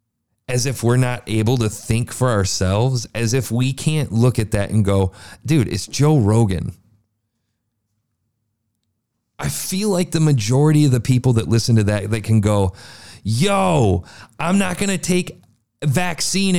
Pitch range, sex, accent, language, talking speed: 110-140 Hz, male, American, English, 160 wpm